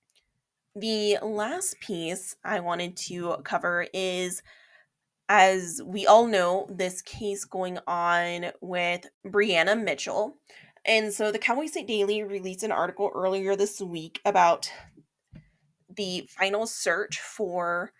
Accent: American